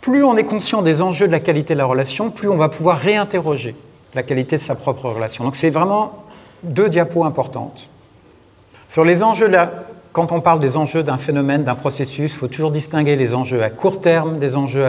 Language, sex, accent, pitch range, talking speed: French, male, French, 125-160 Hz, 220 wpm